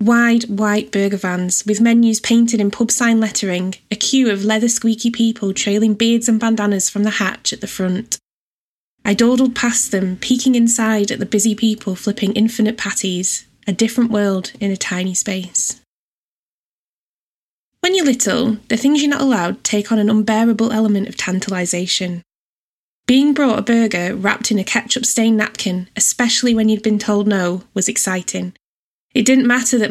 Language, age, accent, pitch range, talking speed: English, 10-29, British, 195-235 Hz, 165 wpm